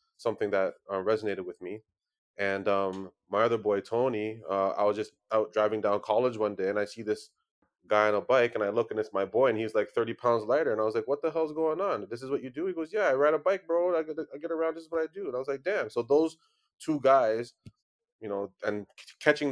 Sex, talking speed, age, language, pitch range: male, 265 wpm, 20-39, English, 100-160 Hz